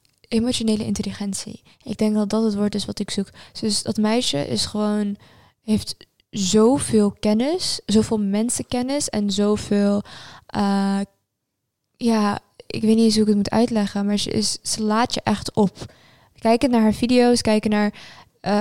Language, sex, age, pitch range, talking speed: Dutch, female, 20-39, 200-220 Hz, 160 wpm